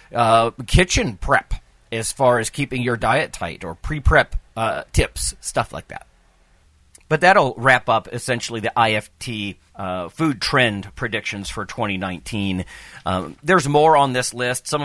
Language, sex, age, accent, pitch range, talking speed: English, male, 40-59, American, 95-130 Hz, 145 wpm